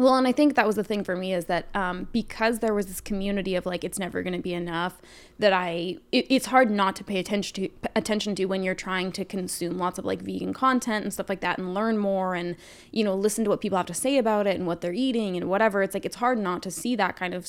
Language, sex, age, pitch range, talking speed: English, female, 20-39, 180-215 Hz, 280 wpm